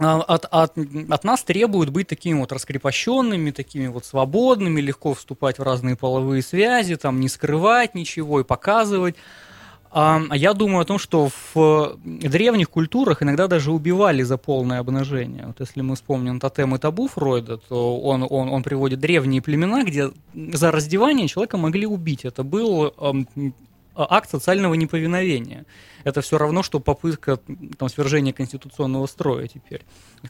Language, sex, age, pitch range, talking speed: Russian, male, 20-39, 130-165 Hz, 145 wpm